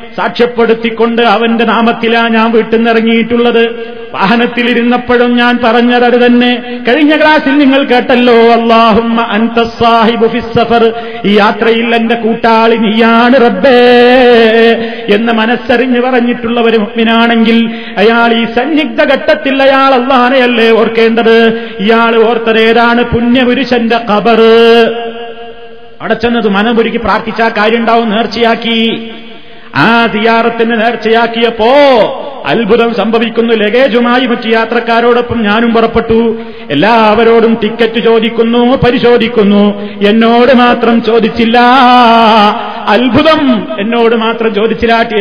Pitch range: 225-235 Hz